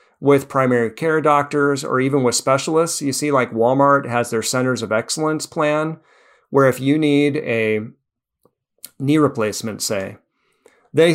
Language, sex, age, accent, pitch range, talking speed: English, male, 40-59, American, 120-150 Hz, 145 wpm